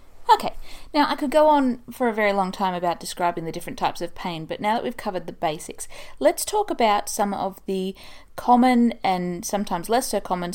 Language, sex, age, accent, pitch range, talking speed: English, female, 30-49, Australian, 180-230 Hz, 210 wpm